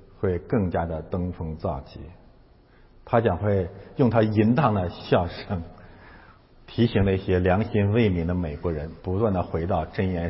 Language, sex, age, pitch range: Chinese, male, 50-69, 85-115 Hz